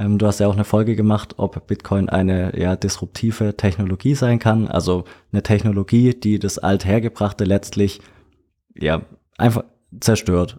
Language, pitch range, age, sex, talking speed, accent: German, 100-120 Hz, 20-39, male, 130 wpm, German